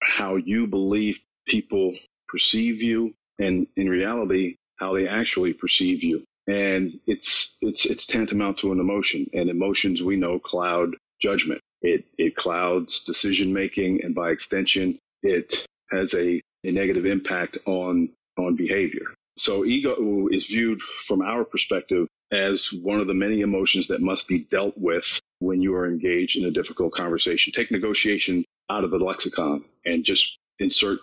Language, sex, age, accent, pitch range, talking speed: English, male, 40-59, American, 90-105 Hz, 155 wpm